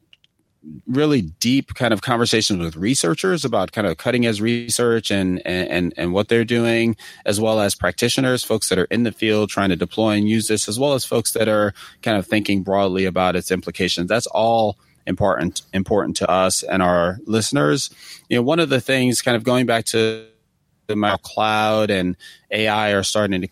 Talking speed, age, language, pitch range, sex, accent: 195 wpm, 30-49, English, 90-110 Hz, male, American